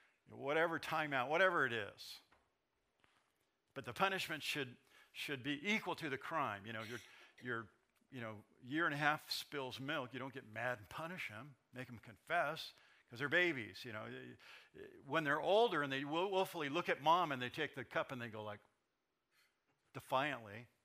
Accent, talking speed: American, 175 wpm